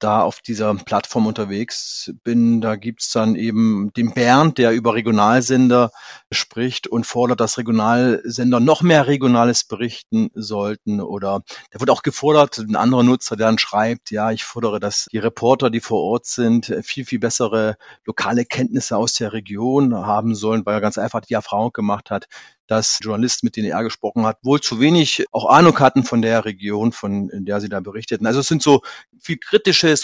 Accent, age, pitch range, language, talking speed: German, 40-59, 110-130 Hz, German, 185 wpm